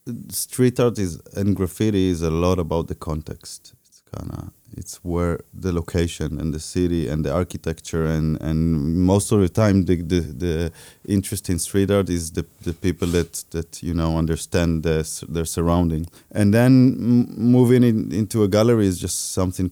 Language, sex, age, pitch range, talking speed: English, male, 30-49, 85-100 Hz, 175 wpm